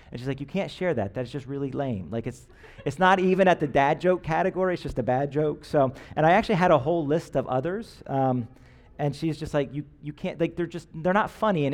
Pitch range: 125-180 Hz